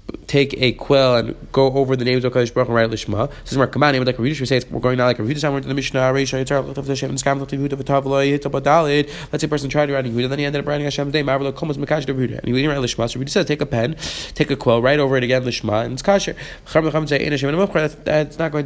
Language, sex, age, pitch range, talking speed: English, male, 30-49, 125-155 Hz, 275 wpm